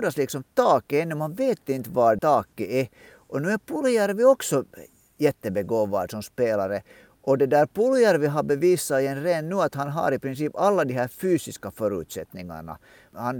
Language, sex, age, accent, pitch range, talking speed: Swedish, male, 50-69, Finnish, 125-190 Hz, 170 wpm